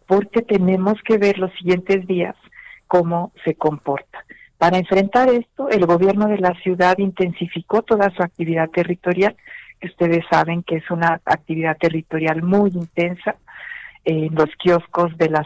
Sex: female